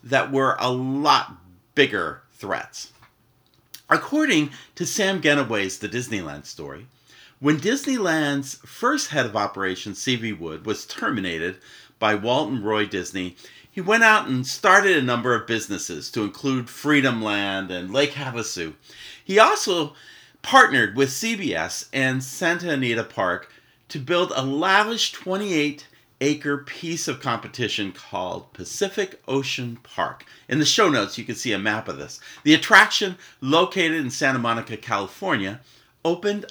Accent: American